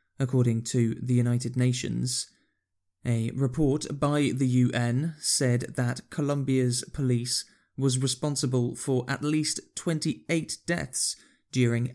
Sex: male